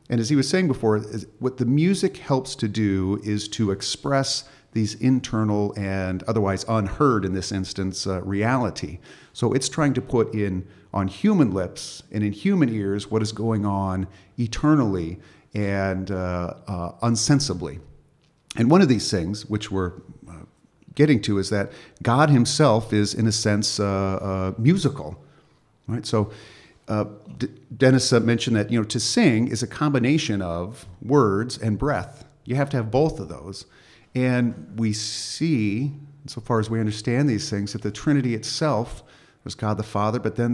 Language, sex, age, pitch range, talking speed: English, male, 50-69, 100-130 Hz, 165 wpm